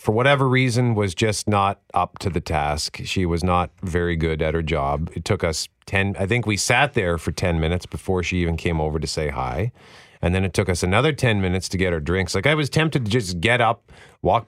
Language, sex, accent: English, male, American